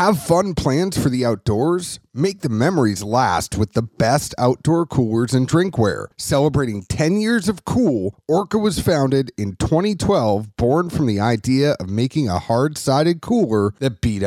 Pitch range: 115-160 Hz